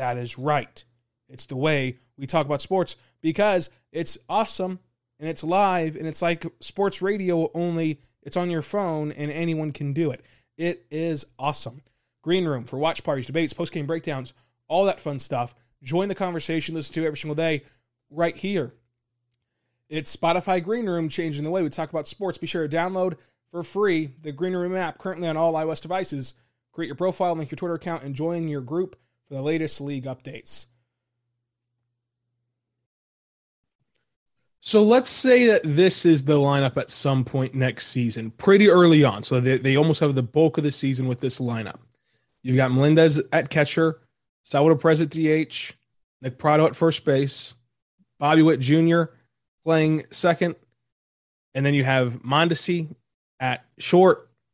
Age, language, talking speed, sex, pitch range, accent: 20-39, English, 170 wpm, male, 130-165 Hz, American